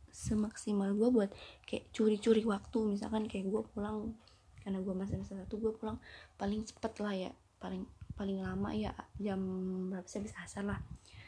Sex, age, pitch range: female, 20-39, 190-210 Hz